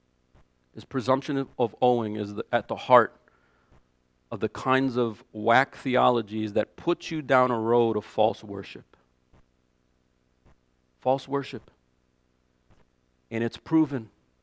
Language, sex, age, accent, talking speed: English, male, 40-59, American, 115 wpm